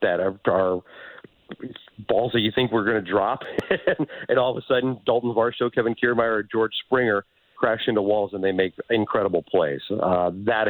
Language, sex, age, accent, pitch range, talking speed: English, male, 40-59, American, 95-115 Hz, 175 wpm